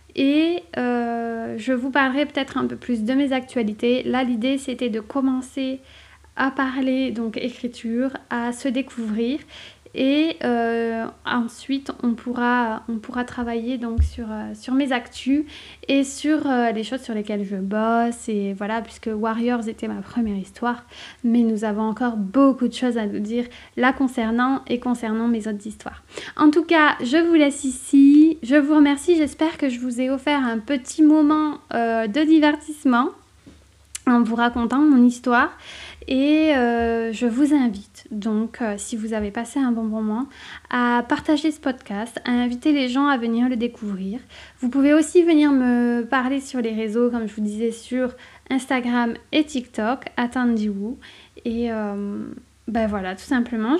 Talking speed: 165 wpm